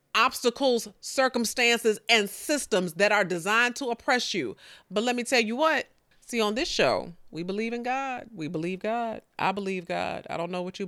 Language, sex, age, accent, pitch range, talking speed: English, female, 40-59, American, 145-215 Hz, 195 wpm